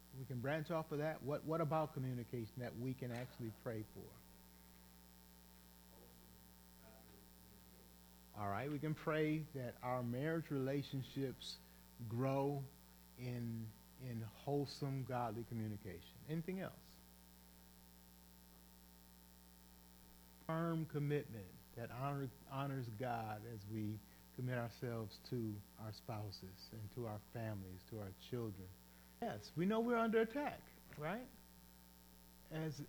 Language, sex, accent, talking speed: English, male, American, 110 wpm